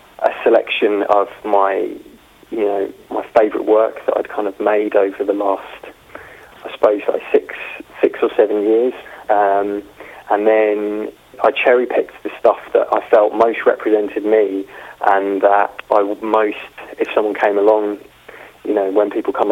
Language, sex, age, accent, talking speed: English, male, 20-39, British, 160 wpm